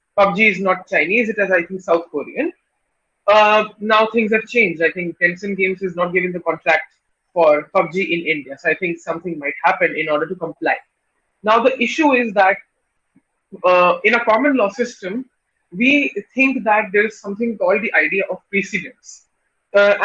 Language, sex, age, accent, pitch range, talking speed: English, female, 20-39, Indian, 180-240 Hz, 185 wpm